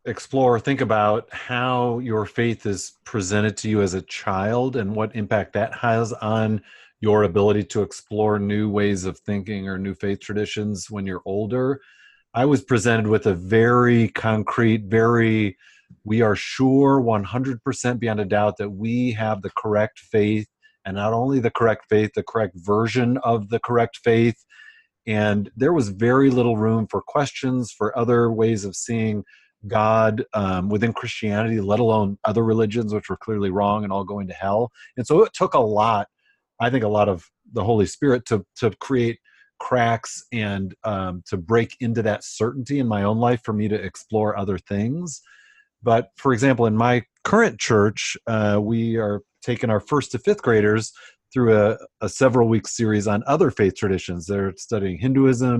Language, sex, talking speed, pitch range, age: English, male, 175 wpm, 105-120 Hz, 40-59